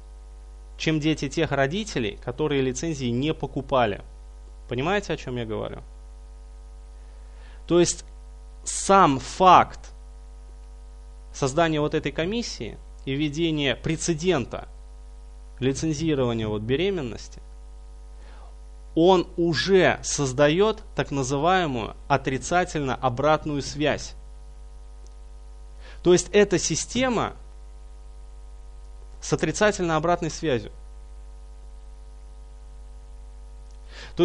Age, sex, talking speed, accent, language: 20-39, male, 75 wpm, native, Russian